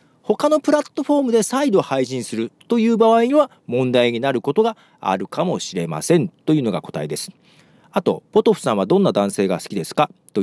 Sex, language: male, Japanese